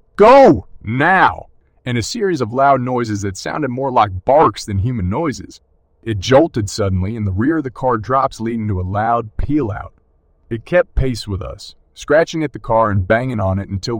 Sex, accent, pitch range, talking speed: male, American, 95-120 Hz, 195 wpm